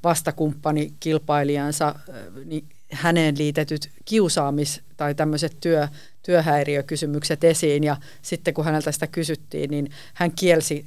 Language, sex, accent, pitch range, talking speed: Finnish, female, native, 145-165 Hz, 105 wpm